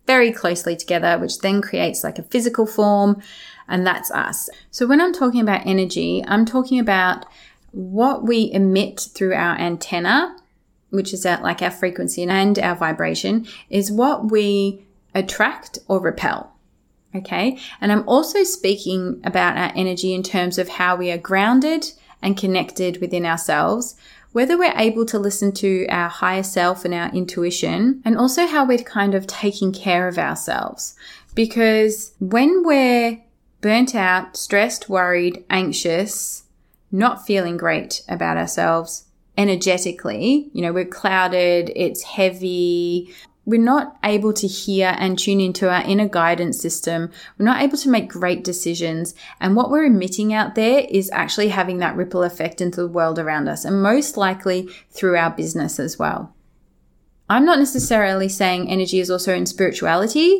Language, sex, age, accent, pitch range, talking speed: English, female, 20-39, Australian, 180-225 Hz, 155 wpm